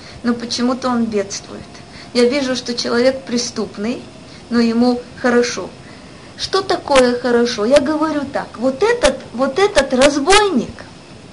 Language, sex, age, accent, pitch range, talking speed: Russian, female, 20-39, native, 235-285 Hz, 115 wpm